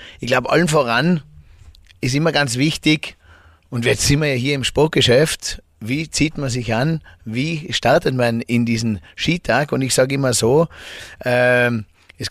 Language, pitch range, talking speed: German, 115-140 Hz, 160 wpm